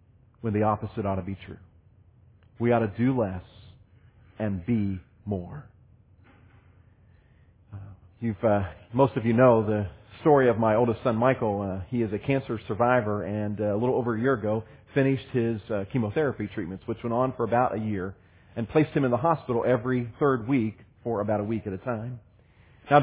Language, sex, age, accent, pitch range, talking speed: English, male, 40-59, American, 105-150 Hz, 185 wpm